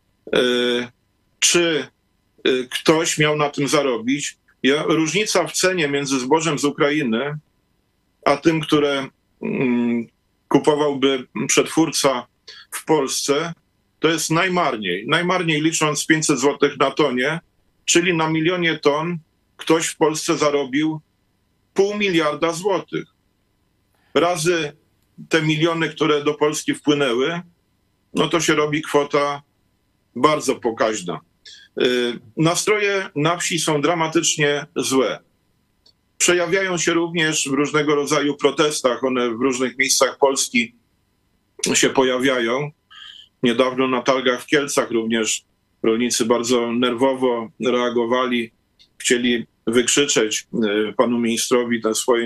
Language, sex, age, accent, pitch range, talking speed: Polish, male, 40-59, native, 120-155 Hz, 100 wpm